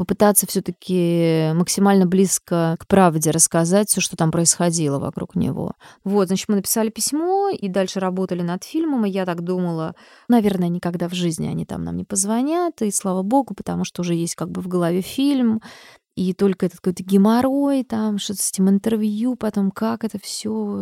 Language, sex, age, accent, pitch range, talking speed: Russian, female, 20-39, native, 180-220 Hz, 180 wpm